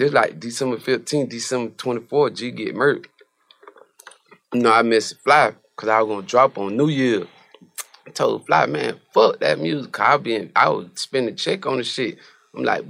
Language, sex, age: English, male, 20-39